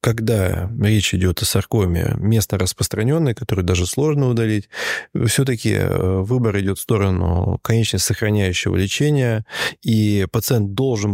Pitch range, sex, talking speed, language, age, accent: 95-120 Hz, male, 120 wpm, Russian, 20-39, native